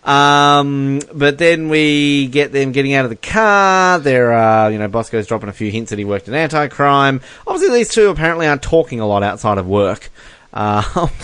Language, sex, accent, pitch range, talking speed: English, male, Australian, 105-145 Hz, 205 wpm